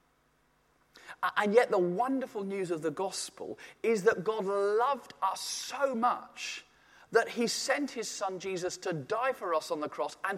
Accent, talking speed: British, 170 wpm